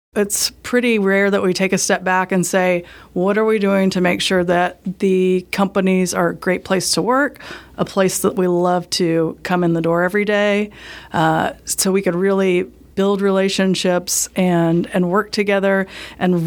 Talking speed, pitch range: 185 wpm, 175-195 Hz